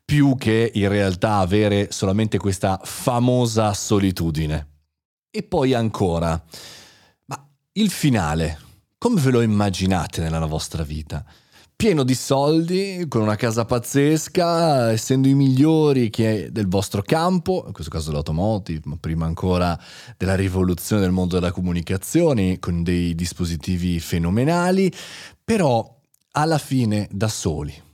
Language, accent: Italian, native